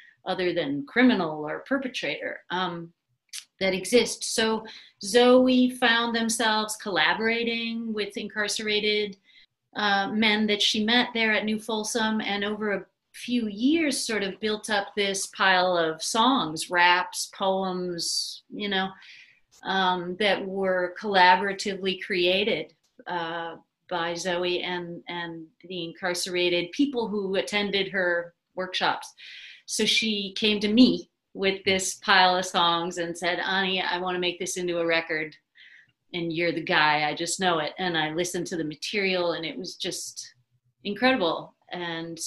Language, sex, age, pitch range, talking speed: English, female, 40-59, 175-215 Hz, 140 wpm